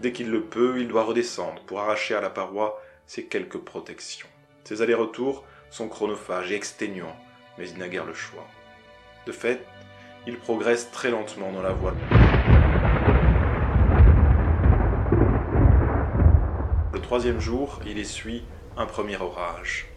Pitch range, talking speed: 90-115 Hz, 135 wpm